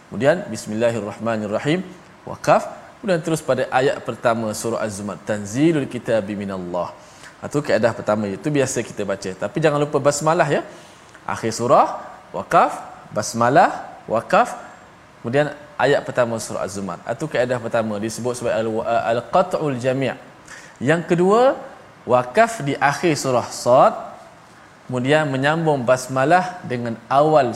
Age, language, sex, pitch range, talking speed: 20-39, Malayalam, male, 110-150 Hz, 120 wpm